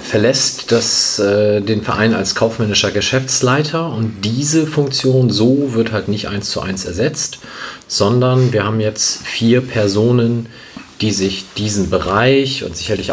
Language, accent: German, German